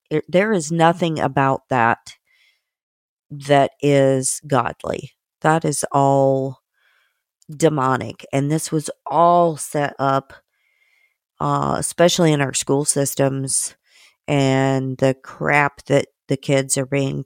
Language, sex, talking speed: English, female, 115 wpm